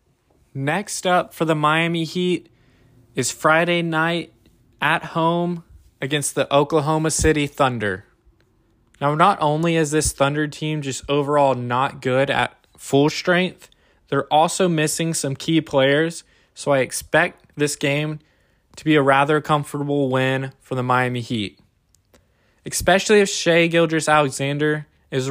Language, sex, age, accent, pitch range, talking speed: English, male, 20-39, American, 125-150 Hz, 135 wpm